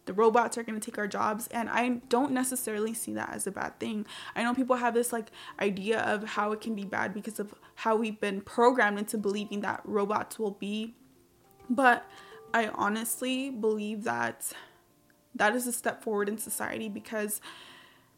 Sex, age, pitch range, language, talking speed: female, 20-39, 205-235 Hz, English, 185 wpm